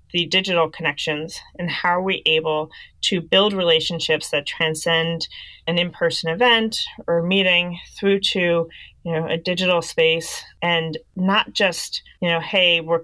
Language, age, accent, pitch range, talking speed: English, 30-49, American, 155-175 Hz, 145 wpm